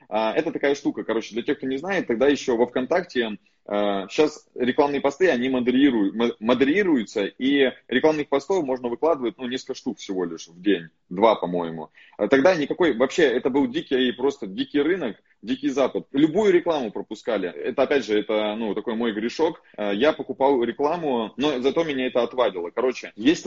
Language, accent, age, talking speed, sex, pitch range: Russian, native, 20-39, 165 wpm, male, 120-155 Hz